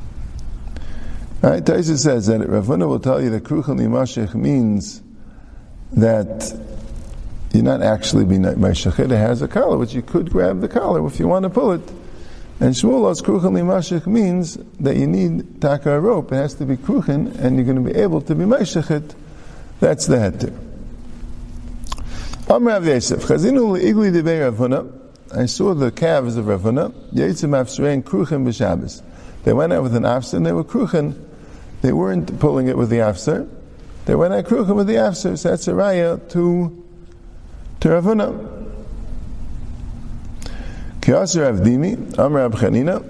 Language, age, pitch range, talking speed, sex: English, 50-69, 115-175 Hz, 145 wpm, male